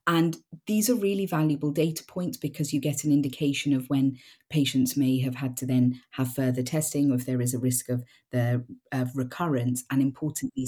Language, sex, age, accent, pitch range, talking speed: English, female, 40-59, British, 130-165 Hz, 195 wpm